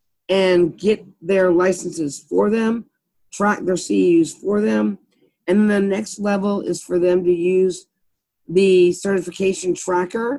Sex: female